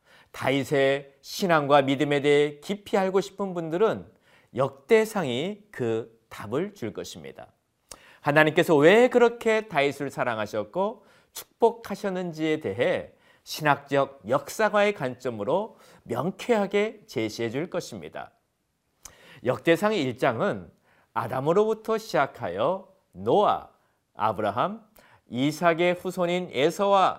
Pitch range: 140-210 Hz